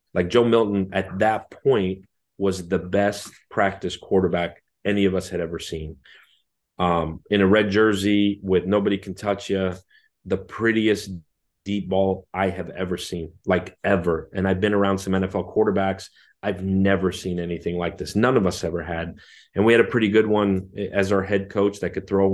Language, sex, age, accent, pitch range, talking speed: English, male, 30-49, American, 90-100 Hz, 185 wpm